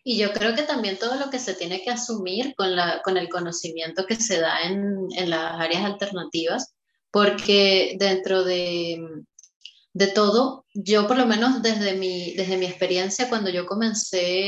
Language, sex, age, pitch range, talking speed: Spanish, female, 20-39, 190-245 Hz, 175 wpm